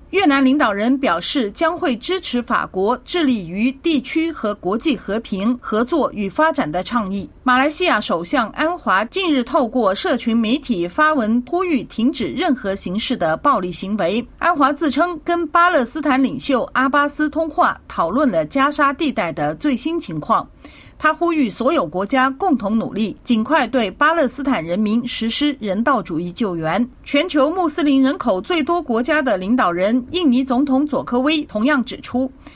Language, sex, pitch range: Chinese, female, 225-310 Hz